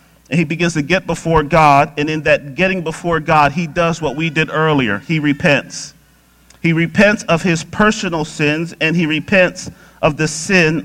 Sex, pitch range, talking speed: male, 145-180 Hz, 185 wpm